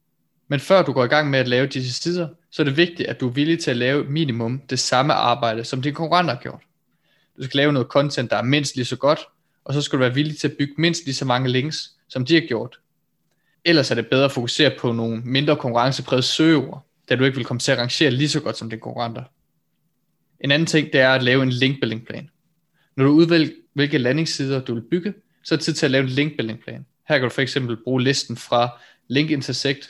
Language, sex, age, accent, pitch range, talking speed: Danish, male, 20-39, native, 125-150 Hz, 240 wpm